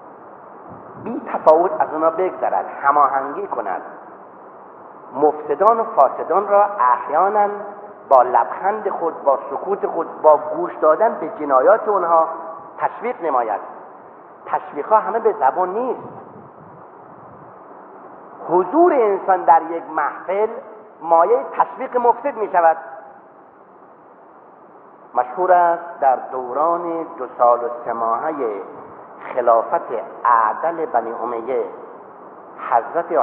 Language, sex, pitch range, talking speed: Persian, male, 140-205 Hz, 105 wpm